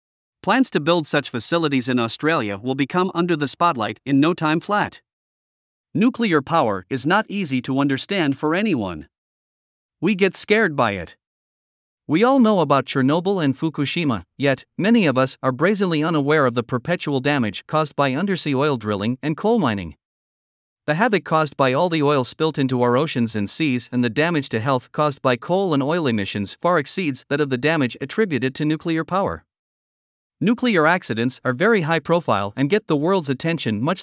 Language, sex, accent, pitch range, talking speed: English, male, American, 130-170 Hz, 180 wpm